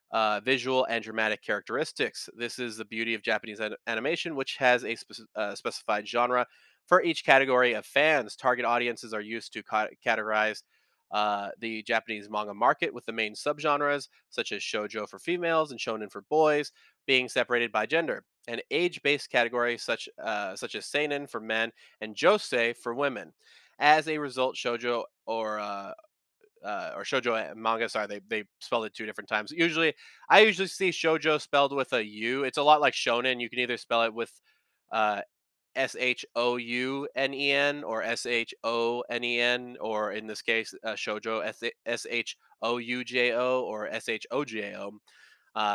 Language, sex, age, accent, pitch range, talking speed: English, male, 20-39, American, 110-140 Hz, 155 wpm